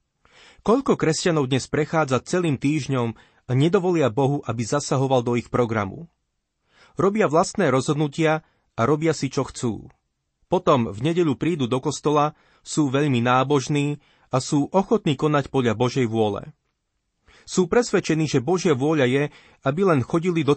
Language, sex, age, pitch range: Slovak, male, 30-49, 125-160 Hz